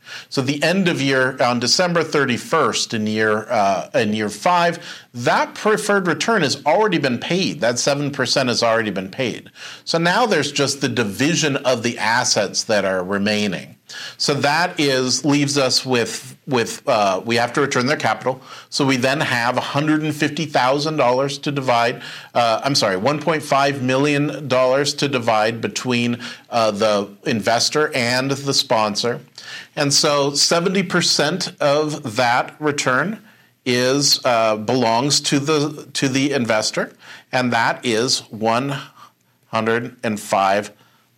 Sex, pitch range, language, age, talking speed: male, 115-145 Hz, English, 40-59, 150 wpm